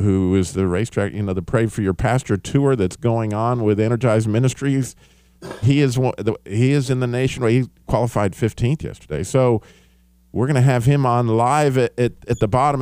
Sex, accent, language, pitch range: male, American, English, 90-120 Hz